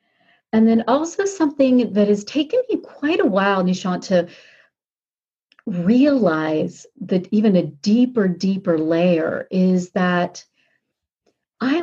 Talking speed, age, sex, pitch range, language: 115 wpm, 40-59, female, 175-230 Hz, English